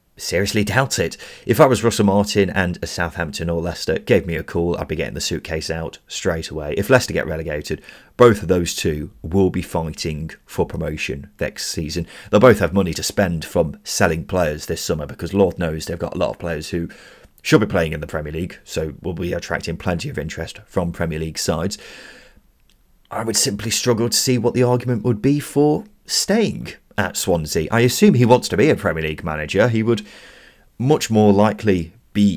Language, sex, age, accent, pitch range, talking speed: English, male, 30-49, British, 85-125 Hz, 205 wpm